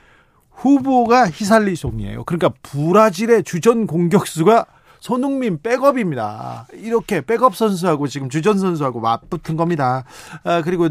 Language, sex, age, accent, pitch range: Korean, male, 40-59, native, 140-185 Hz